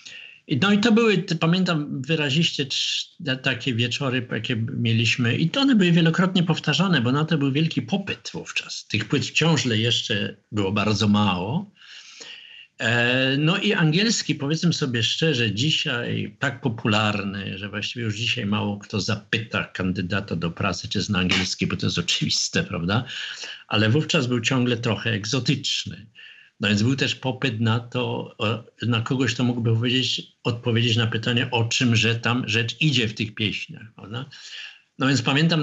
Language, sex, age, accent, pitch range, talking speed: Polish, male, 50-69, native, 105-145 Hz, 155 wpm